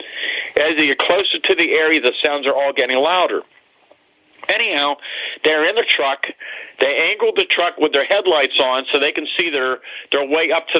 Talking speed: 195 wpm